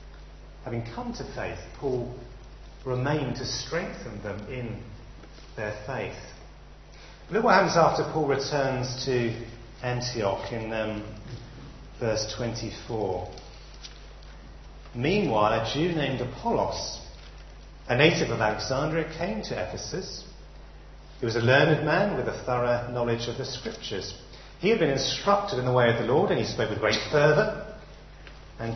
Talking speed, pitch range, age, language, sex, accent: 135 wpm, 115-150 Hz, 40-59, English, male, British